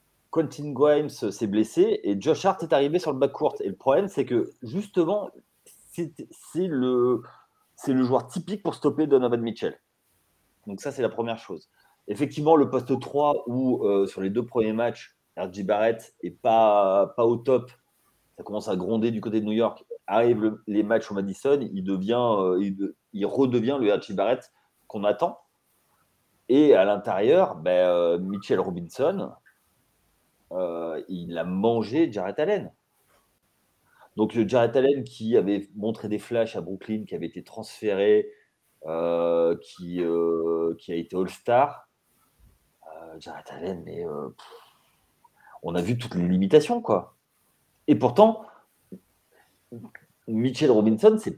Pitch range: 95-155 Hz